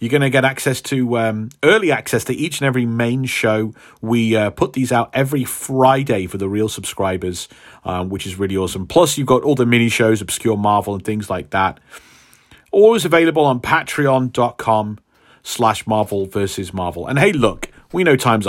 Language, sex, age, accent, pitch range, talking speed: English, male, 40-59, British, 110-145 Hz, 185 wpm